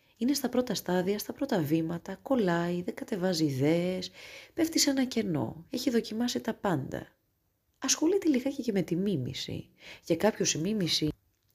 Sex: female